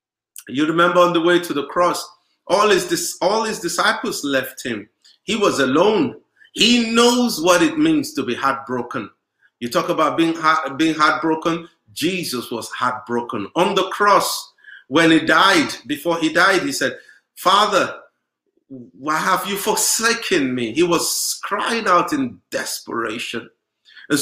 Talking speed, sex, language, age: 145 wpm, male, English, 50-69